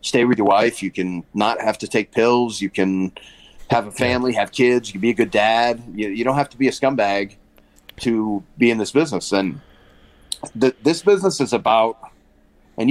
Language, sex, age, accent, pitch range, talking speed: English, male, 30-49, American, 95-125 Hz, 200 wpm